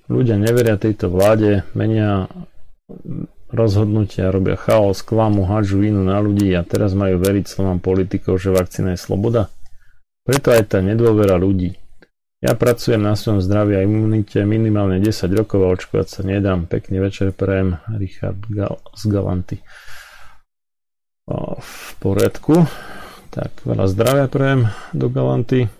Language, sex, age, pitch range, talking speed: Slovak, male, 40-59, 95-110 Hz, 130 wpm